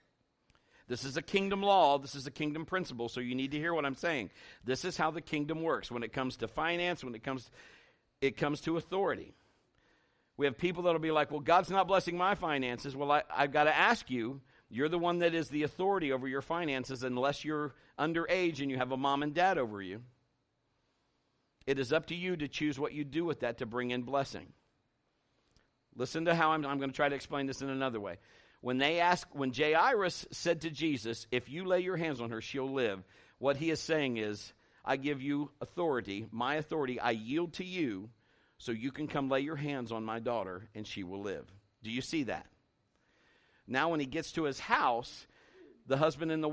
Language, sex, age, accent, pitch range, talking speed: English, male, 50-69, American, 125-165 Hz, 215 wpm